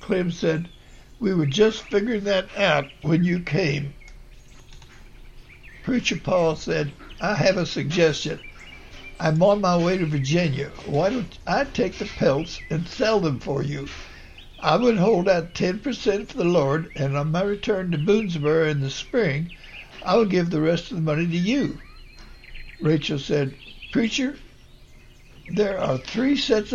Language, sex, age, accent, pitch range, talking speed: English, male, 60-79, American, 140-190 Hz, 155 wpm